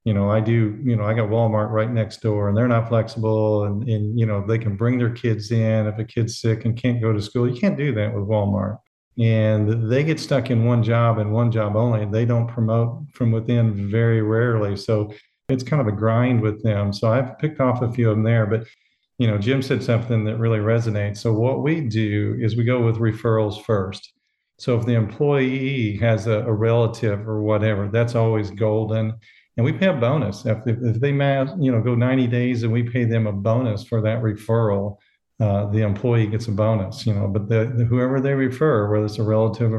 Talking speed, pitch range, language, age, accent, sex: 225 wpm, 110-120 Hz, English, 40-59, American, male